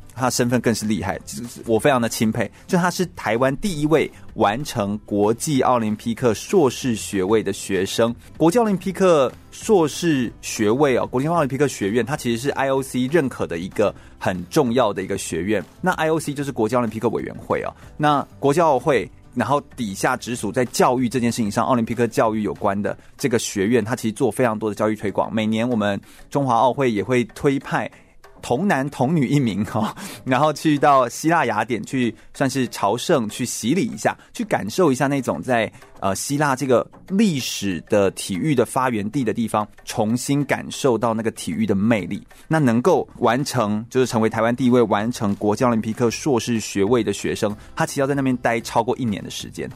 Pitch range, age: 110-140 Hz, 30-49